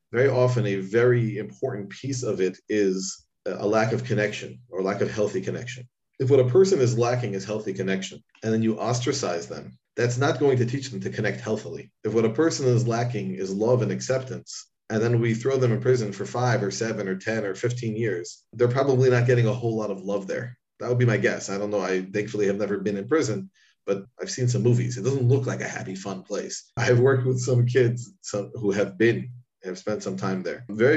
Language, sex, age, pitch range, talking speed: English, male, 40-59, 105-125 Hz, 235 wpm